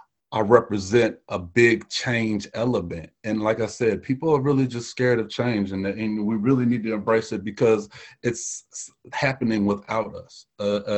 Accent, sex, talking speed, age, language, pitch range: American, male, 170 wpm, 30-49, English, 105-140 Hz